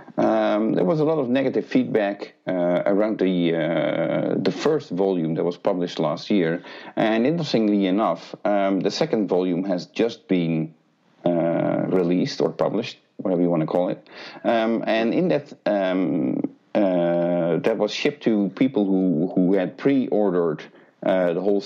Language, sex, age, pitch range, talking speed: English, male, 50-69, 90-105 Hz, 160 wpm